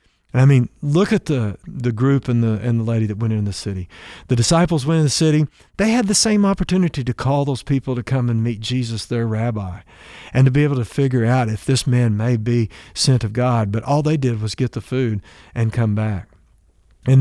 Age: 50-69